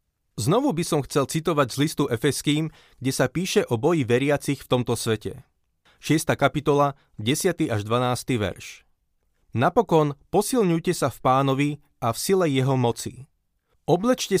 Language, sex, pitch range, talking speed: Slovak, male, 120-150 Hz, 140 wpm